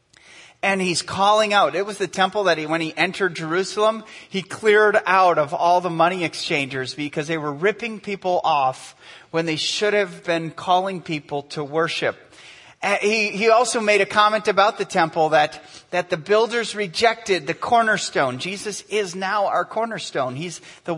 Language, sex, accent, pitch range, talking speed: English, male, American, 155-205 Hz, 170 wpm